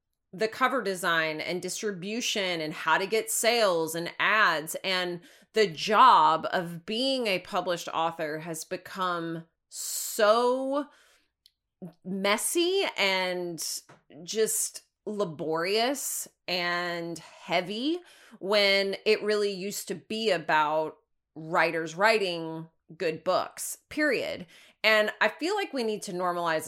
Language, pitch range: English, 175-230 Hz